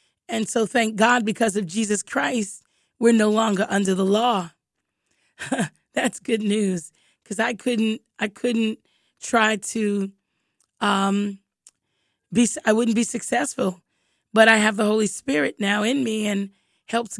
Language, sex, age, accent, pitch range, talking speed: English, female, 20-39, American, 200-225 Hz, 145 wpm